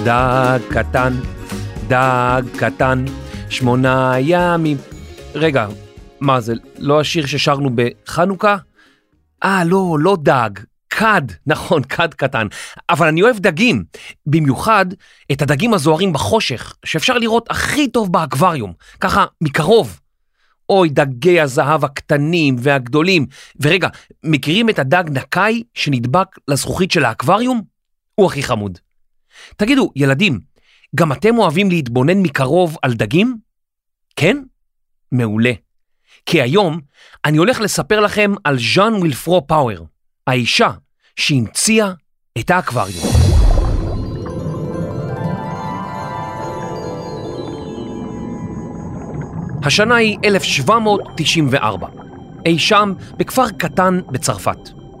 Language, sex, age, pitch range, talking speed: Hebrew, male, 40-59, 125-185 Hz, 95 wpm